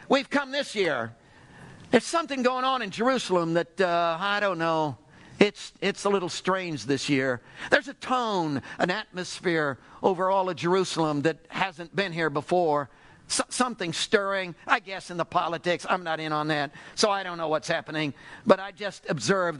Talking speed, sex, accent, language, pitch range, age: 180 wpm, male, American, English, 160-205 Hz, 50-69